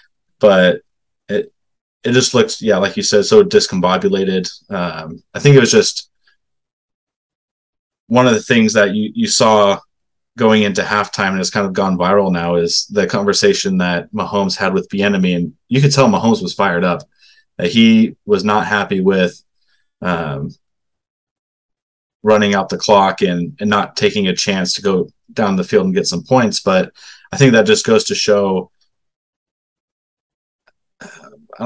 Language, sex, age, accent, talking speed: English, male, 20-39, American, 165 wpm